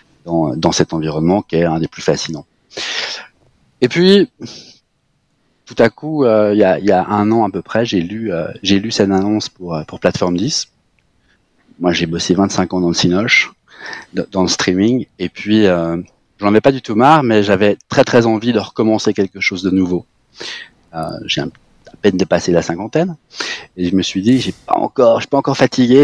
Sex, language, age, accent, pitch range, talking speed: male, French, 30-49, French, 100-125 Hz, 200 wpm